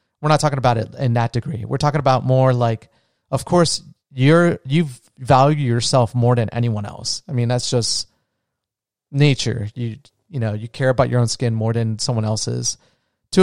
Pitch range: 115-135 Hz